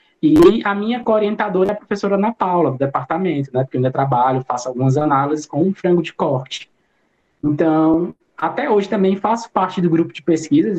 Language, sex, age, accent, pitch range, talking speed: Portuguese, male, 20-39, Brazilian, 145-195 Hz, 190 wpm